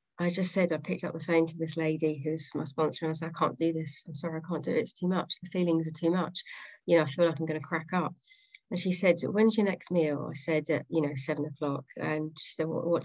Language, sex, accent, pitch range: English, female, British, 155-175 Hz